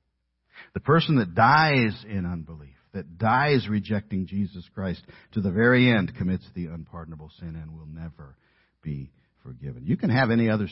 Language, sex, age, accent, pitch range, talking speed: English, male, 60-79, American, 80-125 Hz, 160 wpm